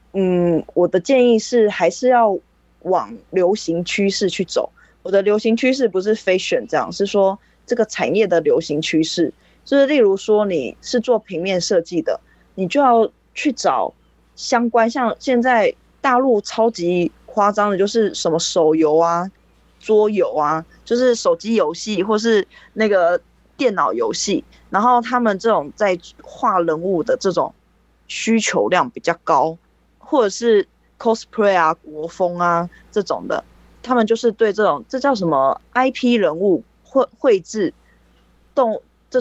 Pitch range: 180-235 Hz